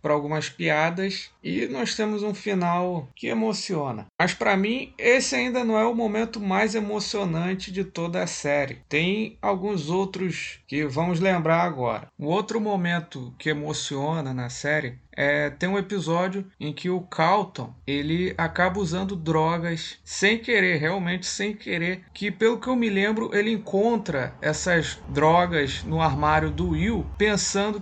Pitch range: 155-200 Hz